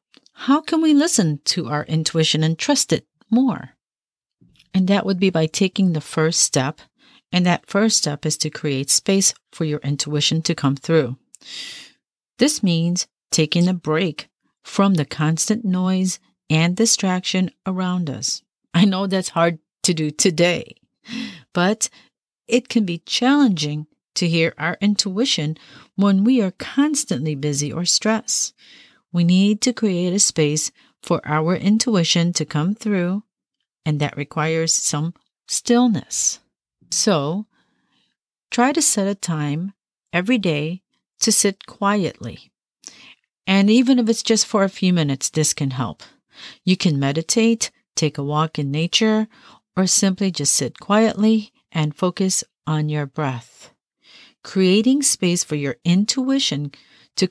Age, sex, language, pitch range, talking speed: 40-59, female, English, 155-220 Hz, 140 wpm